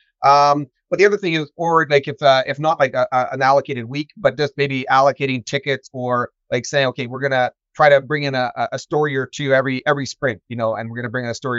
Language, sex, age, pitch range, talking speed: English, male, 30-49, 125-155 Hz, 260 wpm